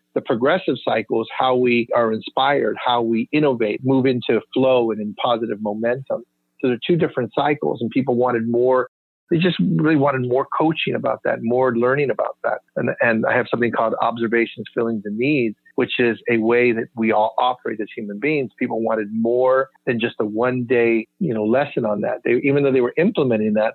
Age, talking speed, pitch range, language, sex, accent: 40-59, 205 wpm, 120-155 Hz, English, male, American